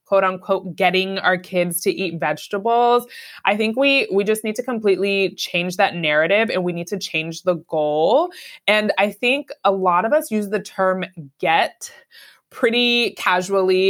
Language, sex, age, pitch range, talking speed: English, female, 20-39, 175-205 Hz, 170 wpm